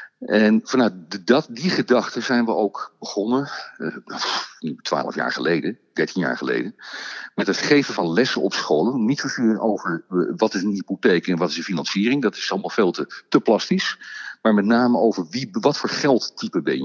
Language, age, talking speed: Dutch, 50-69, 175 wpm